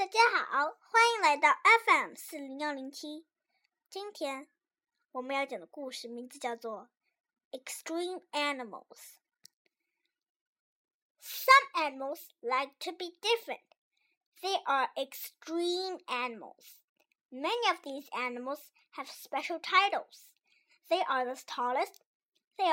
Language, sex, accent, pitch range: Chinese, male, American, 275-380 Hz